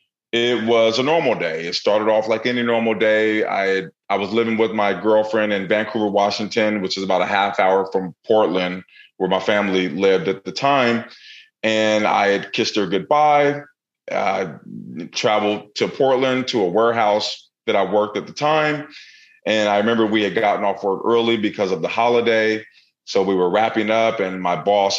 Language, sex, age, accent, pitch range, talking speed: English, male, 30-49, American, 95-115 Hz, 185 wpm